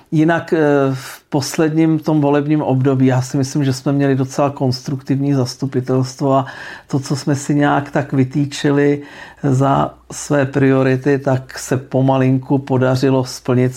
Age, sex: 50-69, male